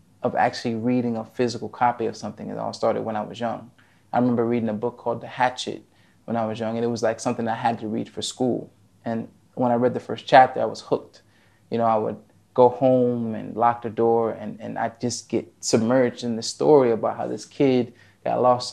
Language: English